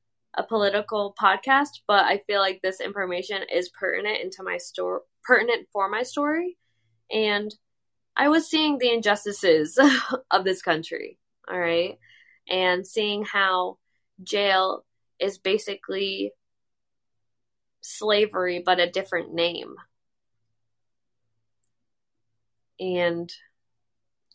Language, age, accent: English, 10-29, American